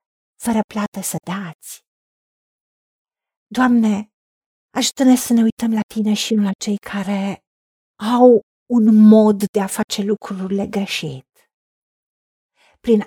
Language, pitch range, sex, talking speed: Romanian, 195-255 Hz, female, 115 wpm